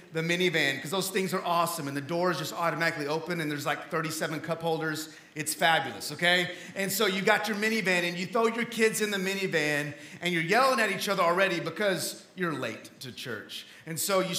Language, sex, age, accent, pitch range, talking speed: English, male, 30-49, American, 165-230 Hz, 215 wpm